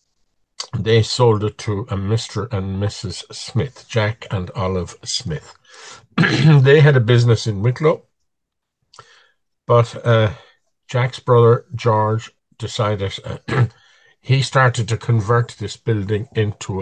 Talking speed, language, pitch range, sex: 120 wpm, English, 105-125 Hz, male